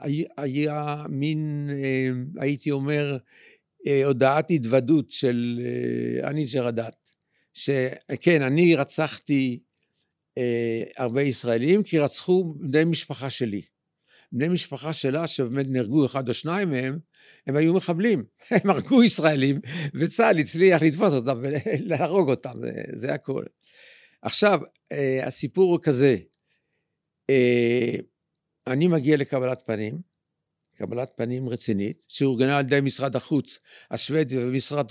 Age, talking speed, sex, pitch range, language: 50-69, 105 wpm, male, 130-170 Hz, Hebrew